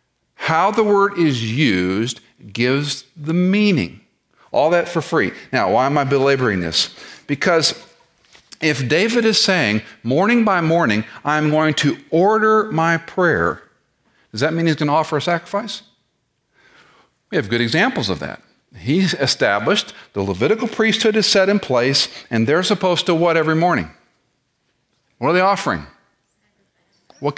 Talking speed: 150 wpm